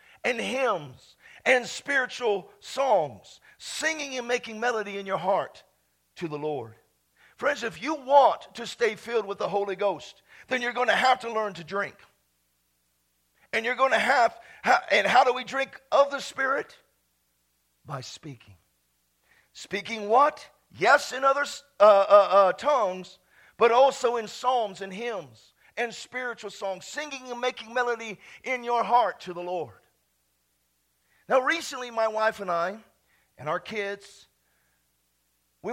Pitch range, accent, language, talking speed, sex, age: 140-230 Hz, American, English, 150 wpm, male, 50-69